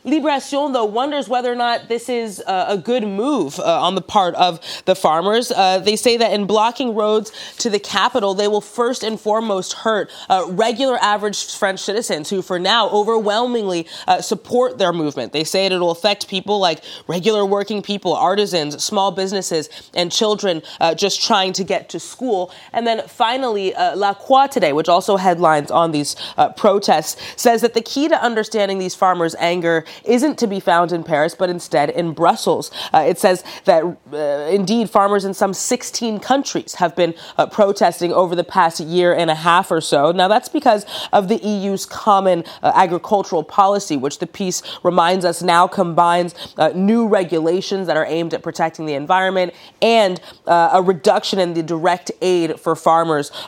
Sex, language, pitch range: female, English, 170-215 Hz